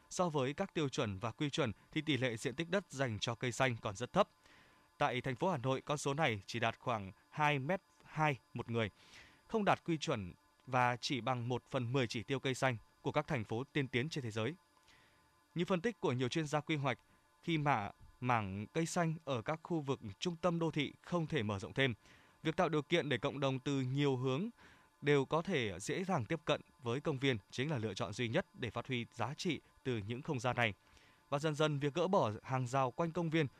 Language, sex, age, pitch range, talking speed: Vietnamese, male, 20-39, 125-160 Hz, 235 wpm